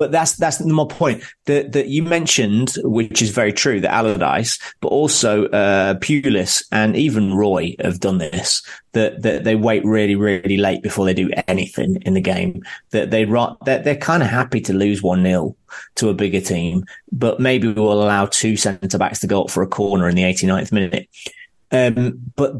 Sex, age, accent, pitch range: male, 30-49, British, 100-135 Hz